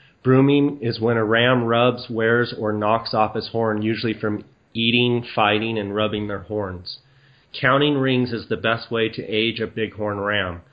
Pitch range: 110-125 Hz